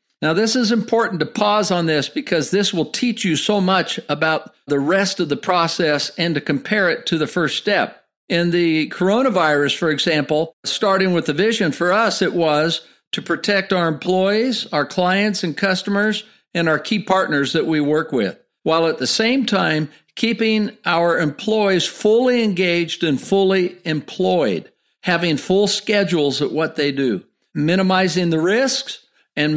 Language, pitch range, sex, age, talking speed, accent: English, 160-205 Hz, male, 50-69, 165 wpm, American